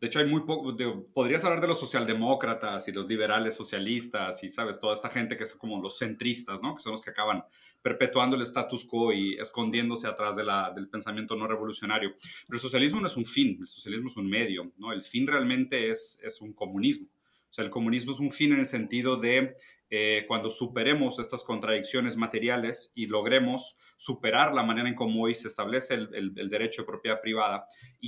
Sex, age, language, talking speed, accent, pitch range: male, 30-49, Spanish, 210 wpm, Mexican, 110-140 Hz